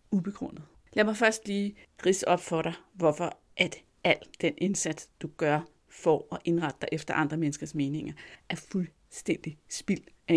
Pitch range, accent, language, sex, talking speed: 160-230 Hz, native, Danish, female, 160 wpm